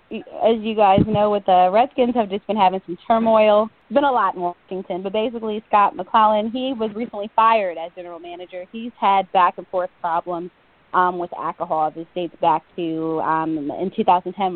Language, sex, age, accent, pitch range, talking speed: English, female, 20-39, American, 165-210 Hz, 180 wpm